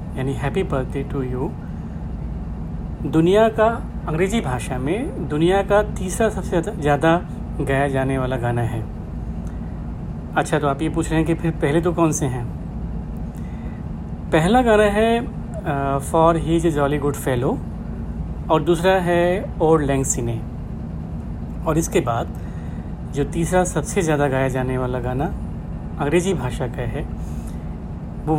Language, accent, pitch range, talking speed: Hindi, native, 120-170 Hz, 135 wpm